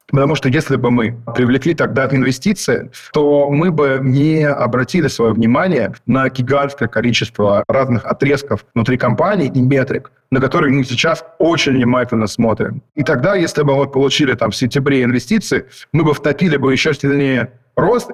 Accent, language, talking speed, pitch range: native, Russian, 160 wpm, 120-145 Hz